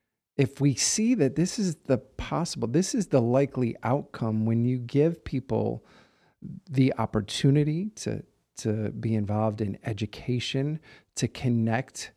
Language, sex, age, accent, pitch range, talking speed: English, male, 40-59, American, 115-145 Hz, 135 wpm